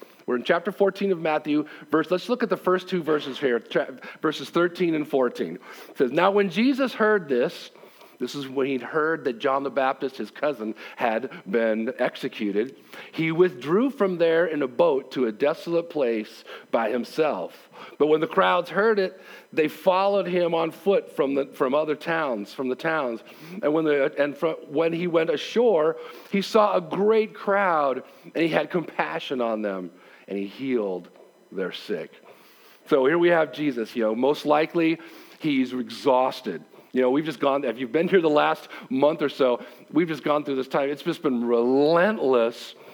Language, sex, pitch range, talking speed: English, male, 135-180 Hz, 185 wpm